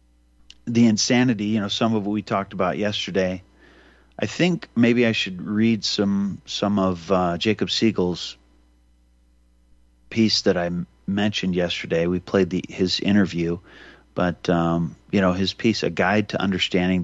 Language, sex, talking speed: English, male, 155 wpm